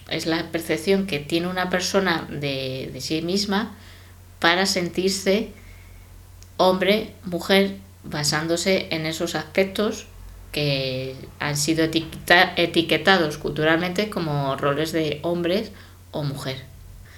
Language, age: Spanish, 20-39